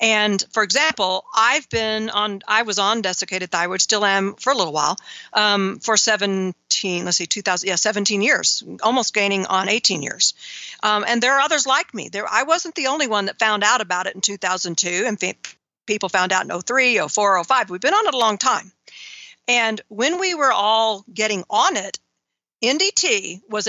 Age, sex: 50-69, female